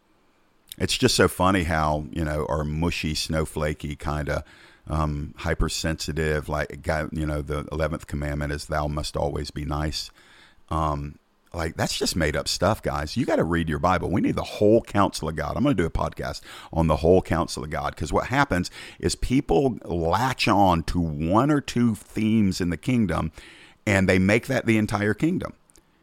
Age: 50-69